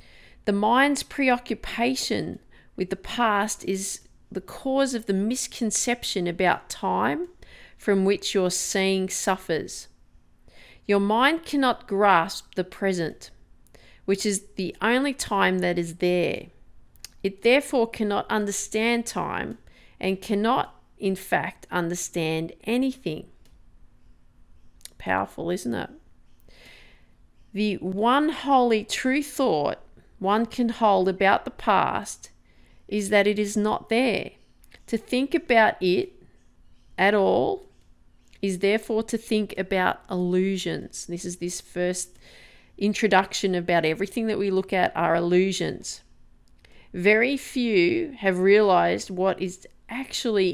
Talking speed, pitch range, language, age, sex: 115 wpm, 180-230 Hz, English, 40-59, female